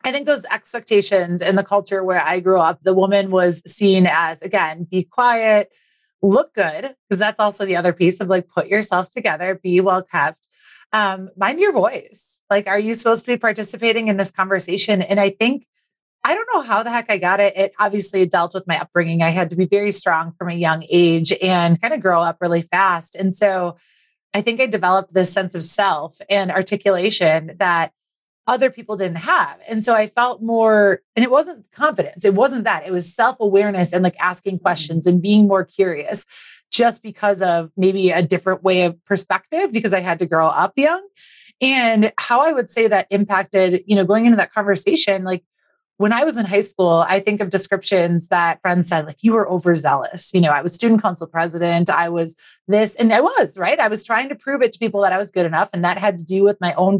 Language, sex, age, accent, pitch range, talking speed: English, female, 30-49, American, 180-215 Hz, 215 wpm